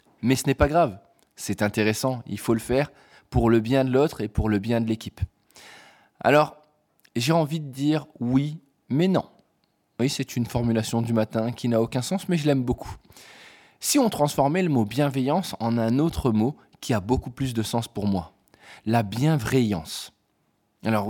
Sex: male